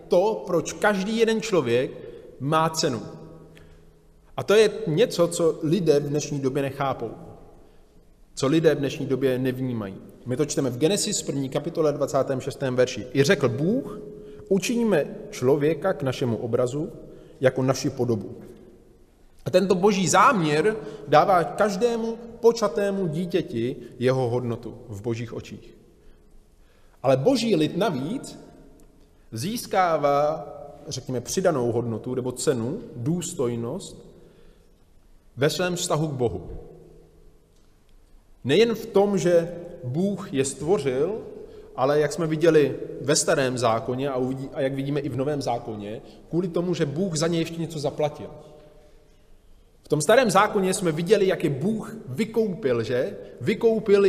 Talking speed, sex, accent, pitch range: 125 wpm, male, native, 130-190 Hz